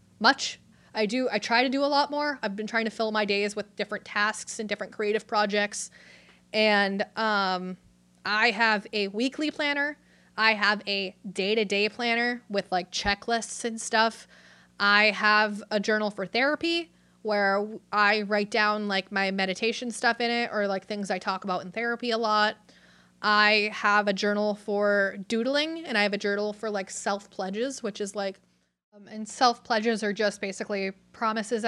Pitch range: 195-225 Hz